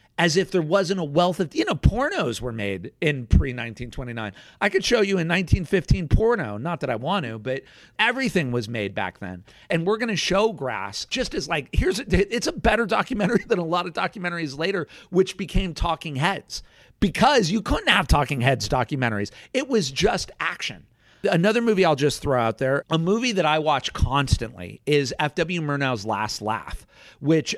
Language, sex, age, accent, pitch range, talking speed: English, male, 40-59, American, 130-175 Hz, 185 wpm